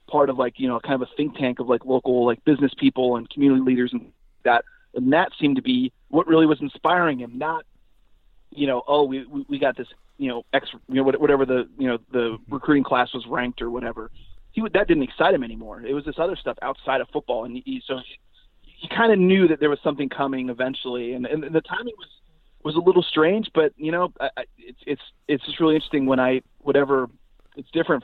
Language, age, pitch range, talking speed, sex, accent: English, 30-49, 125-160 Hz, 235 wpm, male, American